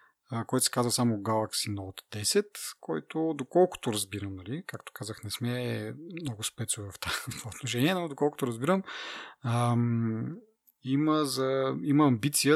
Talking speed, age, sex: 140 wpm, 30-49, male